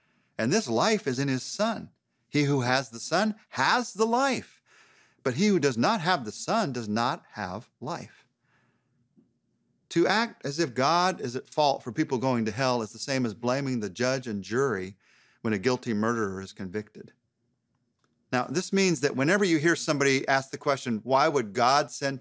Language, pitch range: English, 110-150 Hz